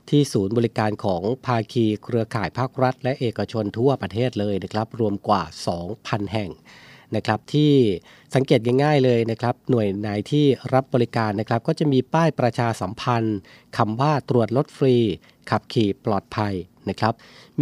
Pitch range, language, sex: 110-135 Hz, Thai, male